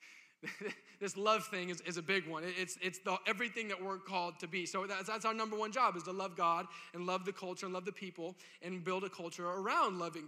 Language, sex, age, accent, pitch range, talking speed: English, male, 20-39, American, 160-200 Hz, 245 wpm